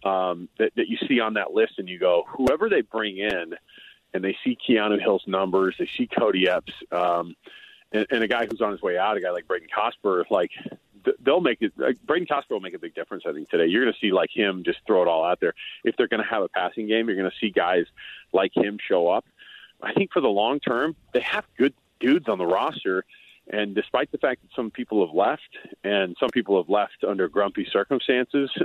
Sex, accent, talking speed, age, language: male, American, 235 wpm, 40-59, English